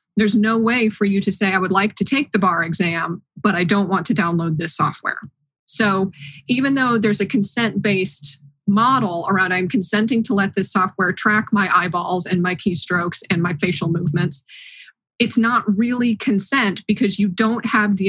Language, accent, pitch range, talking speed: English, American, 185-220 Hz, 190 wpm